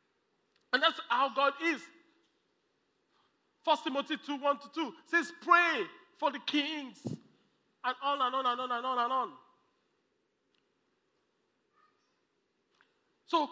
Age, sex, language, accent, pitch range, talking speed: 40-59, male, English, Nigerian, 220-330 Hz, 110 wpm